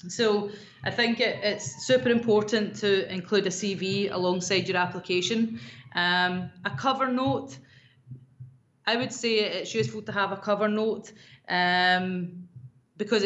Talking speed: 135 wpm